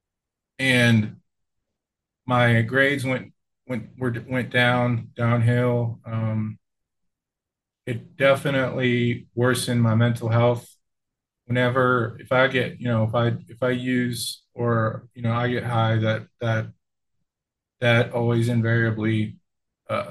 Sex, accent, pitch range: male, American, 110-125 Hz